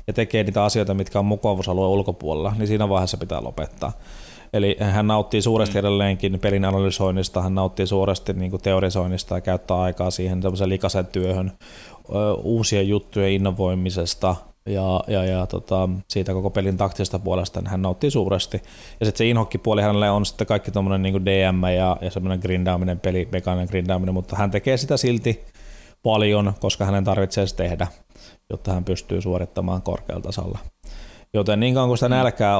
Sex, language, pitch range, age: male, Finnish, 95-105 Hz, 20-39